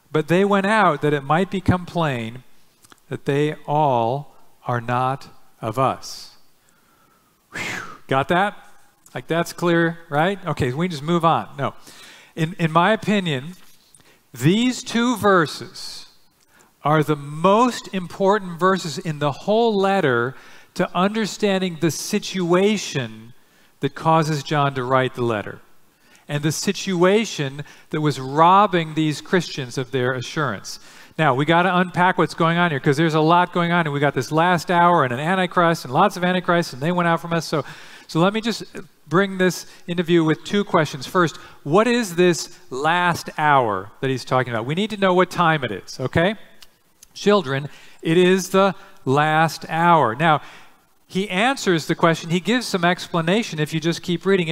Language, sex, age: English, male, 50-69